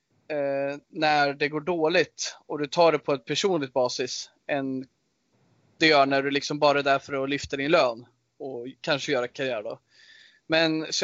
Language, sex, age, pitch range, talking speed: Swedish, male, 20-39, 140-170 Hz, 180 wpm